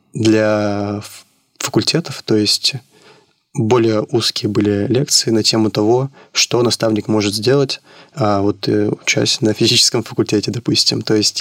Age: 20-39